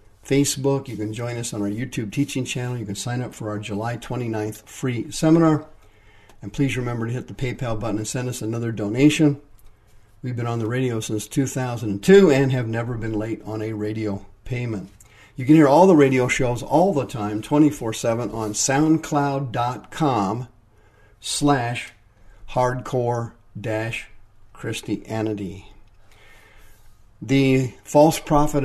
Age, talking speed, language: 50-69, 140 wpm, English